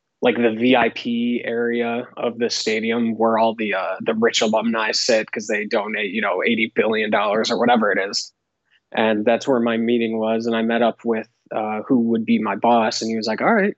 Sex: male